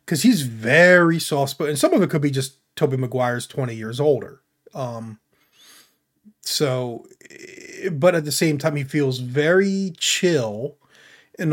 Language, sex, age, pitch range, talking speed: English, male, 30-49, 135-165 Hz, 145 wpm